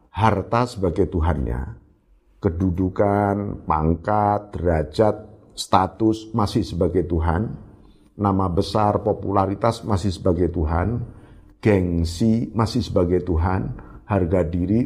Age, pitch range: 50-69, 80-110 Hz